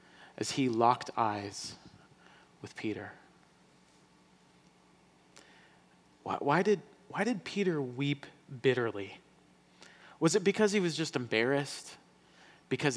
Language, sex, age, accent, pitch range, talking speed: English, male, 30-49, American, 135-200 Hz, 95 wpm